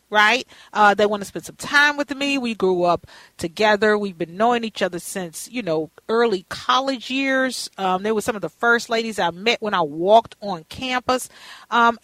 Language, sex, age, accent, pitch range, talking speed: English, female, 40-59, American, 195-275 Hz, 205 wpm